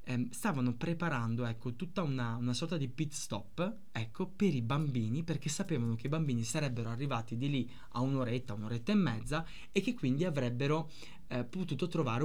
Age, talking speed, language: 20-39, 170 wpm, Italian